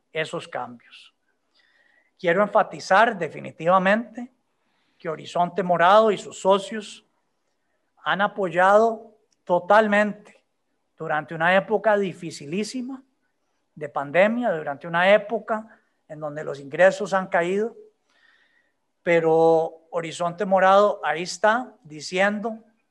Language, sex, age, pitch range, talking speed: Spanish, male, 40-59, 165-210 Hz, 90 wpm